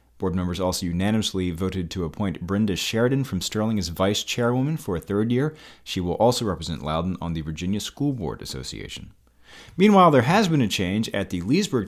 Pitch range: 85-125 Hz